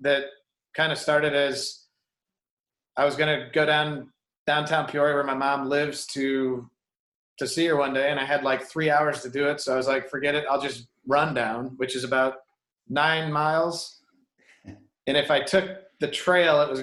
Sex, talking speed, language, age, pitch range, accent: male, 195 wpm, English, 30-49, 140-165 Hz, American